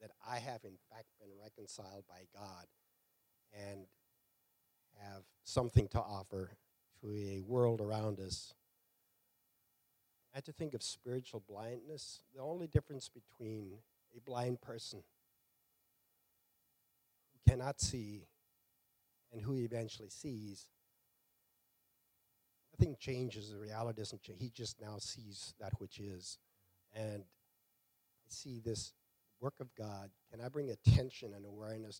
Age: 50-69